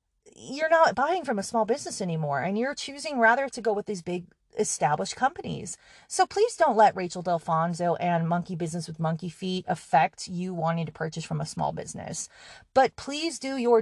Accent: American